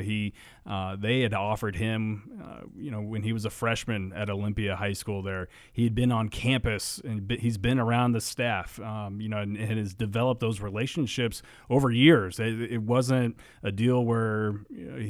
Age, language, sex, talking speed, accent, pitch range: 30-49, English, male, 195 wpm, American, 105-120 Hz